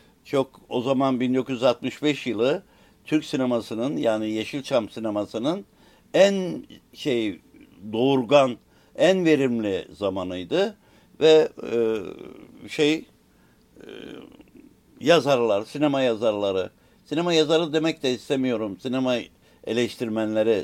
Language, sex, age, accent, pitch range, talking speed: Turkish, male, 60-79, native, 115-155 Hz, 85 wpm